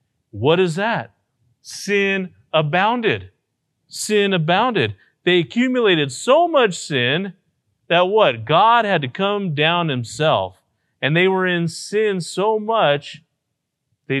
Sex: male